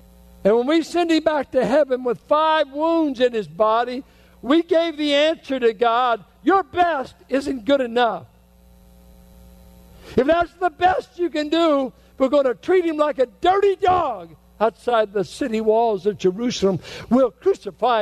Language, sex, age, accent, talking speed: English, male, 60-79, American, 165 wpm